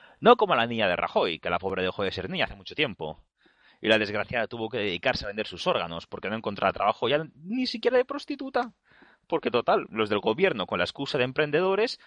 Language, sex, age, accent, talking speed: Spanish, male, 30-49, Spanish, 225 wpm